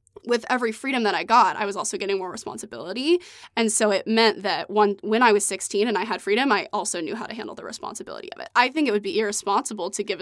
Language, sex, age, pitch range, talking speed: English, female, 20-39, 200-235 Hz, 260 wpm